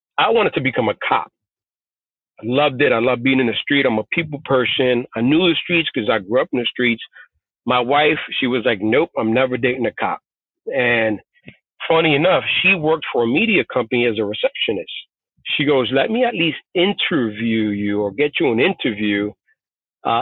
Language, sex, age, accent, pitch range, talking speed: English, male, 40-59, American, 120-165 Hz, 200 wpm